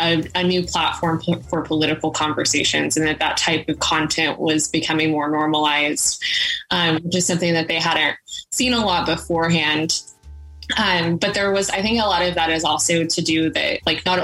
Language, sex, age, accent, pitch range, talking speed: English, female, 20-39, American, 155-175 Hz, 190 wpm